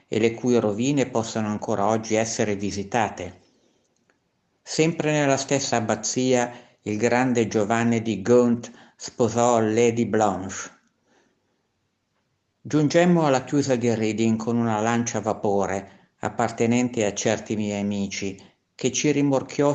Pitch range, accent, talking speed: 105-130 Hz, native, 120 wpm